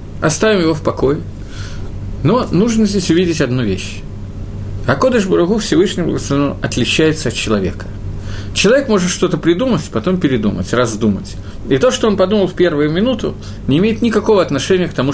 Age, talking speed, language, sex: 50-69, 155 wpm, Russian, male